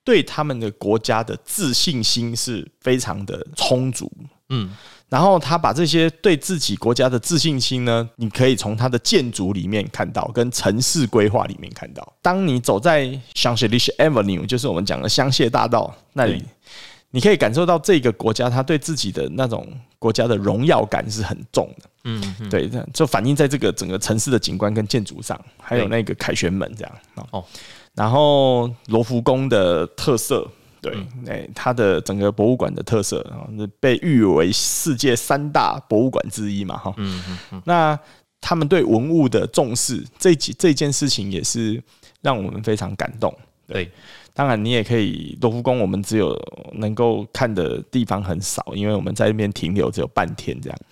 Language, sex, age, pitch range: Chinese, male, 20-39, 105-135 Hz